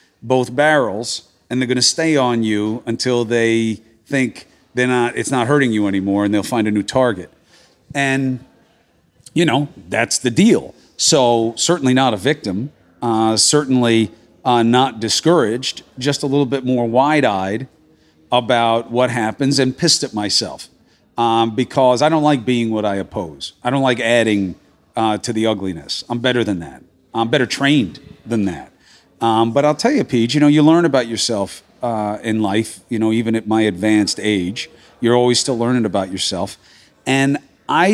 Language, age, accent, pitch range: English, 40-59, American, 110-135 Hz